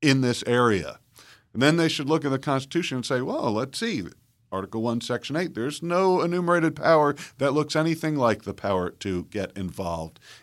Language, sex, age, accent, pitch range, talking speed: English, male, 50-69, American, 100-135 Hz, 190 wpm